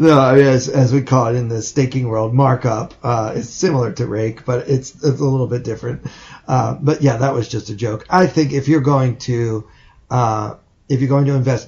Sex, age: male, 30-49